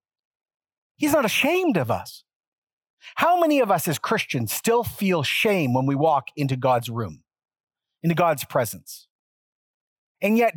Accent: American